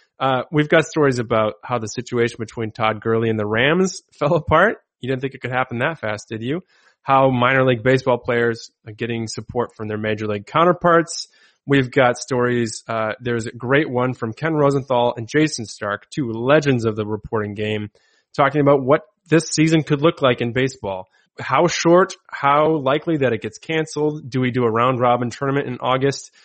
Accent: American